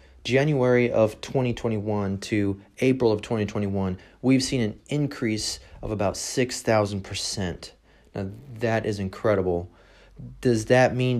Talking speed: 115 wpm